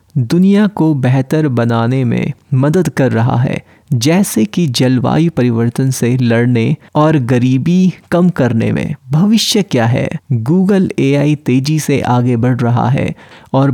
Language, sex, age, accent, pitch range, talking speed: Hindi, male, 30-49, native, 125-155 Hz, 140 wpm